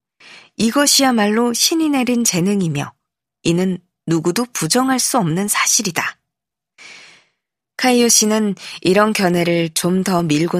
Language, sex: Korean, female